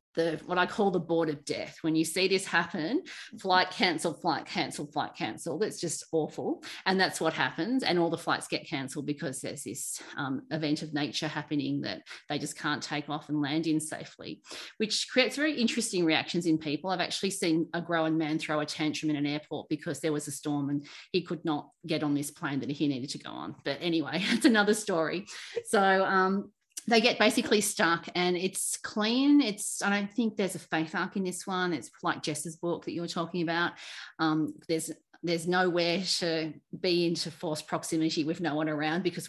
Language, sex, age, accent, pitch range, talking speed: English, female, 30-49, Australian, 155-190 Hz, 205 wpm